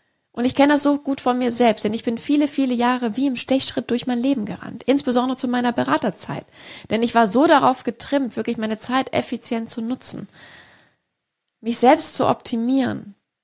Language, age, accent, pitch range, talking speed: German, 20-39, German, 225-260 Hz, 190 wpm